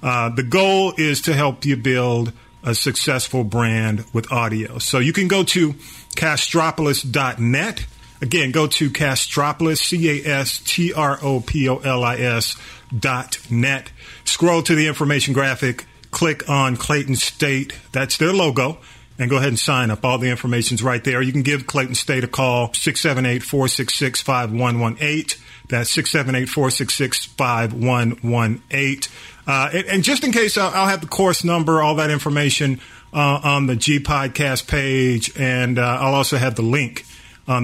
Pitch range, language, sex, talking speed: 120-150 Hz, English, male, 140 wpm